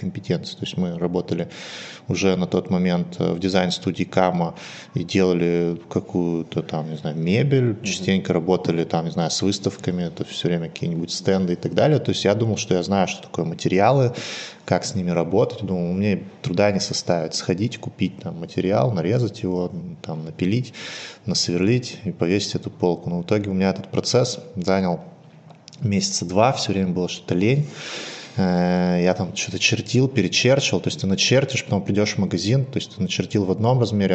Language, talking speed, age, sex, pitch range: Russian, 180 wpm, 20-39, male, 90-110 Hz